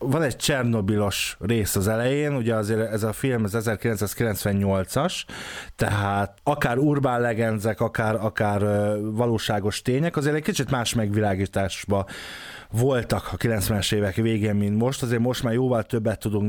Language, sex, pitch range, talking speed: Hungarian, male, 105-125 Hz, 140 wpm